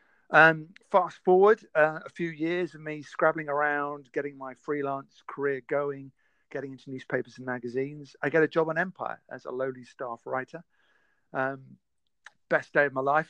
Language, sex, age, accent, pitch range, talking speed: English, male, 50-69, British, 130-165 Hz, 170 wpm